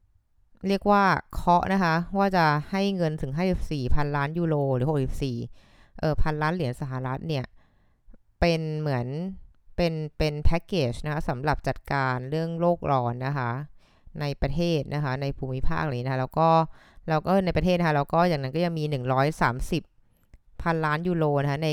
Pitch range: 130-165 Hz